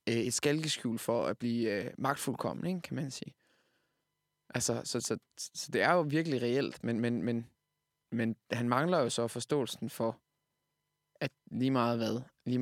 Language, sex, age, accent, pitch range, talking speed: Danish, male, 20-39, native, 120-150 Hz, 165 wpm